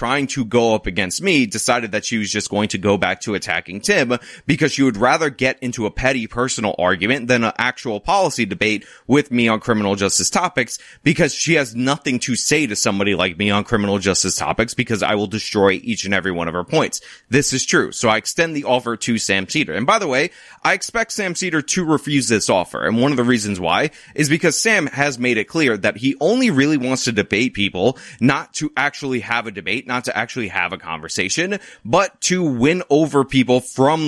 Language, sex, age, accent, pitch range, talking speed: English, male, 30-49, American, 105-140 Hz, 220 wpm